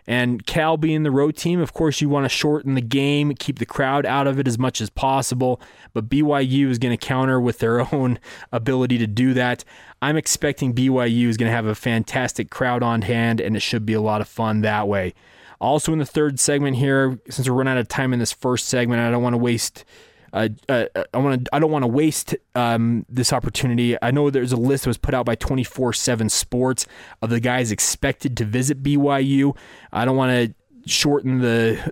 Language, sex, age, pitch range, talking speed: English, male, 20-39, 120-140 Hz, 220 wpm